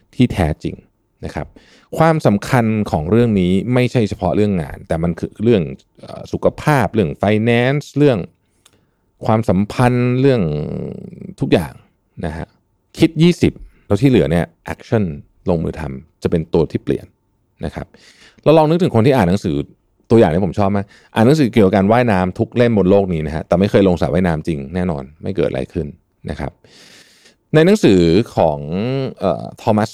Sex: male